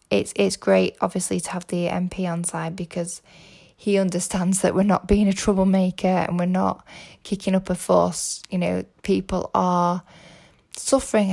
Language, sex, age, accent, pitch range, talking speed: English, female, 10-29, British, 165-195 Hz, 165 wpm